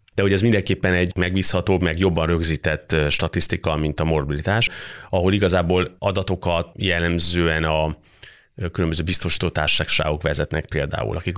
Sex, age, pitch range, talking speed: male, 30-49, 80-90 Hz, 120 wpm